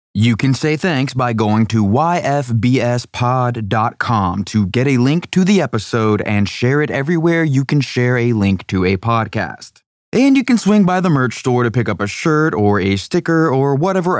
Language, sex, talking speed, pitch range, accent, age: English, male, 190 wpm, 105-140 Hz, American, 20-39